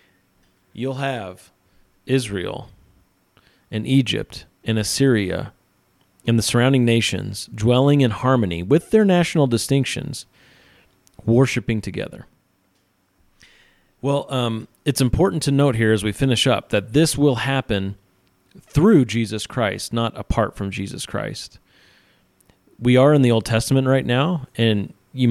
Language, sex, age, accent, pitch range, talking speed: English, male, 30-49, American, 100-130 Hz, 125 wpm